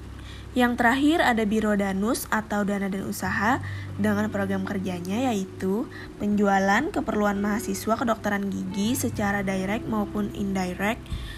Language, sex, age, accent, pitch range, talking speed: Indonesian, female, 20-39, native, 190-230 Hz, 115 wpm